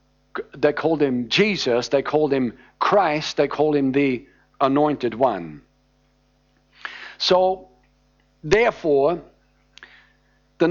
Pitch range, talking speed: 140-185 Hz, 95 wpm